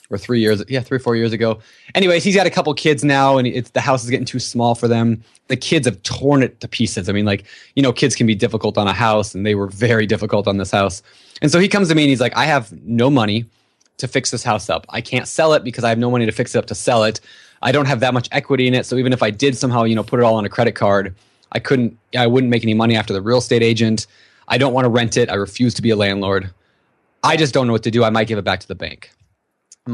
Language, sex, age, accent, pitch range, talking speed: English, male, 20-39, American, 105-130 Hz, 300 wpm